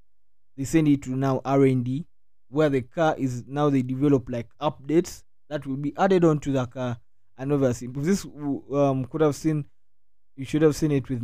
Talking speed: 210 wpm